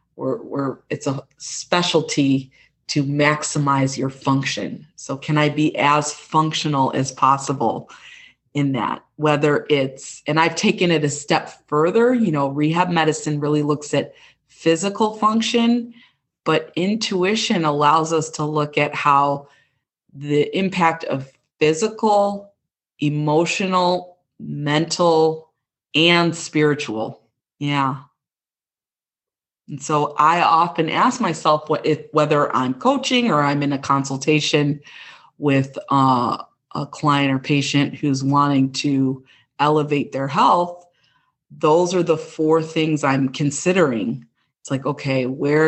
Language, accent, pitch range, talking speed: English, American, 140-165 Hz, 120 wpm